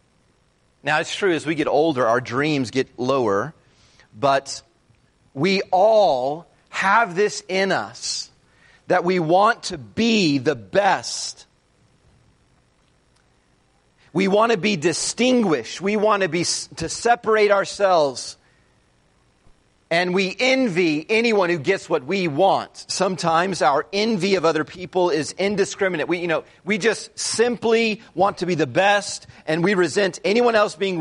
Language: English